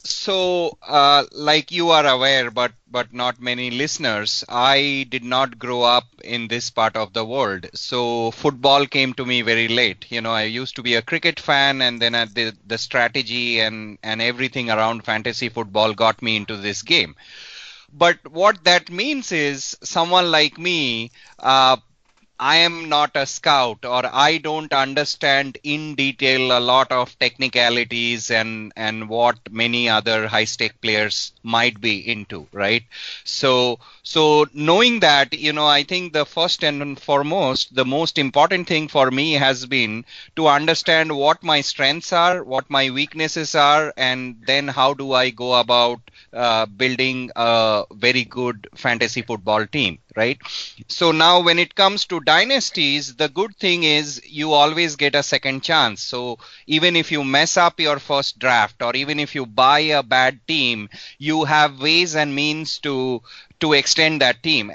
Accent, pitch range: Indian, 120-155 Hz